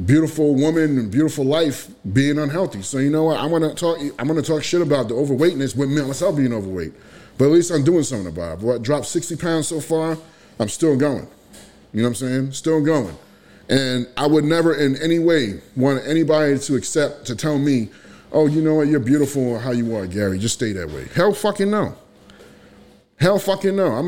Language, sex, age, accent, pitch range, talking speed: English, male, 30-49, American, 120-160 Hz, 210 wpm